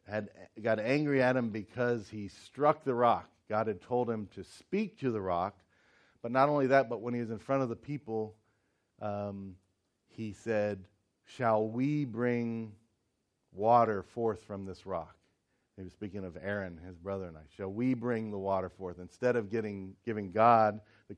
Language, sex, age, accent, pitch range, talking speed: English, male, 40-59, American, 100-120 Hz, 185 wpm